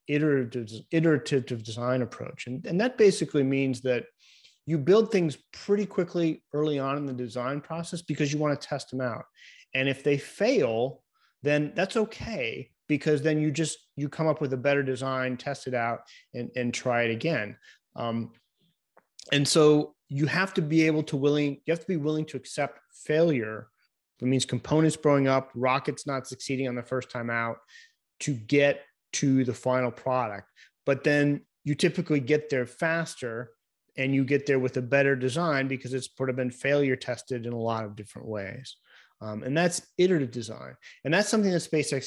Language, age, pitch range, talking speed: English, 30-49, 125-155 Hz, 185 wpm